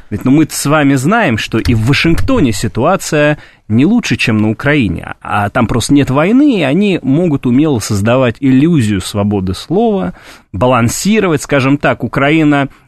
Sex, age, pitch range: male, 30-49, 105-150 Hz